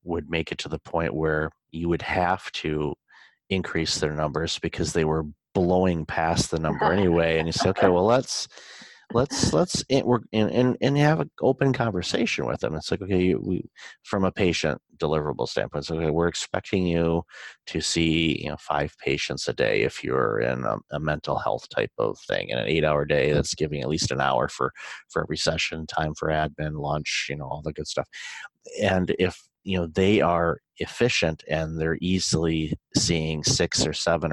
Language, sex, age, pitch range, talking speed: English, male, 30-49, 80-95 Hz, 205 wpm